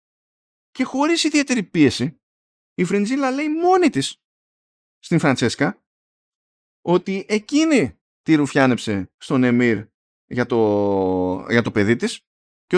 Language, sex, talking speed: Greek, male, 115 wpm